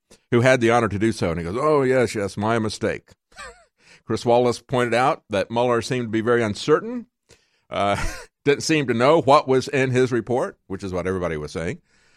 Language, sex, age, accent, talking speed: English, male, 50-69, American, 205 wpm